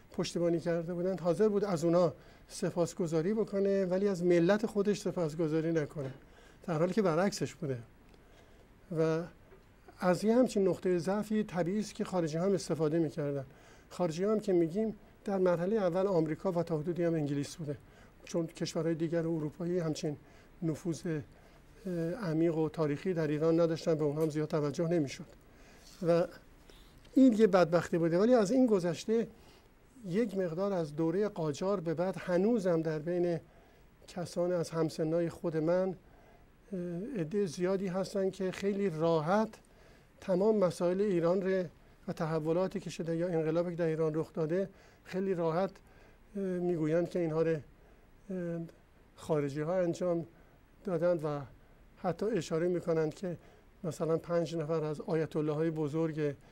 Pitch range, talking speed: 160-190 Hz, 140 wpm